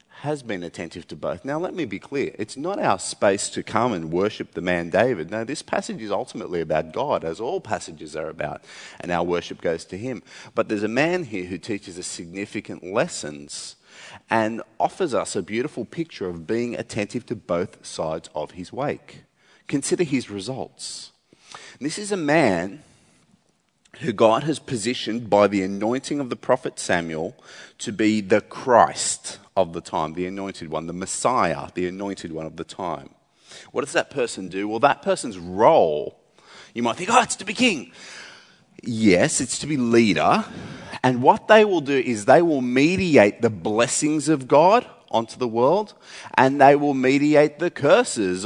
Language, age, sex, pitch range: English, 30-49, male, 95-145 Hz